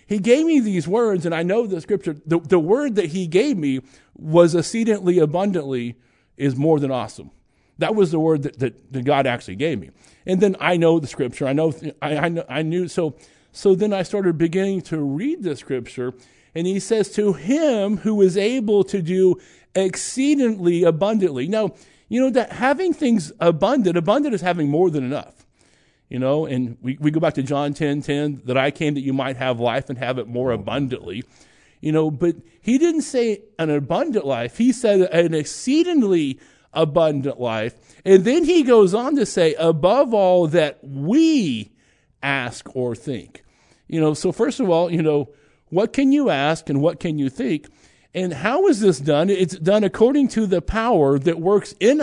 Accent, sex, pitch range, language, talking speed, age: American, male, 145-210 Hz, English, 190 wpm, 50-69